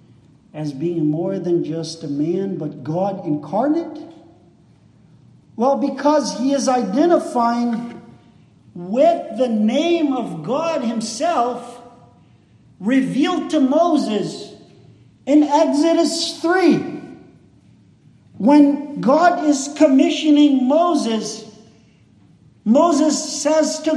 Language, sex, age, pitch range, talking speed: English, male, 50-69, 255-320 Hz, 90 wpm